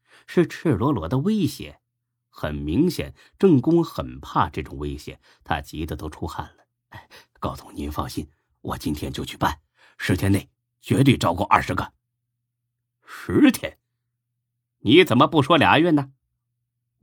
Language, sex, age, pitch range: Chinese, male, 30-49, 90-120 Hz